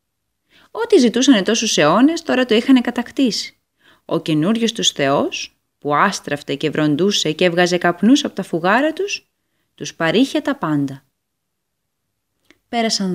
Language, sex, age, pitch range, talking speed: Greek, female, 20-39, 160-260 Hz, 130 wpm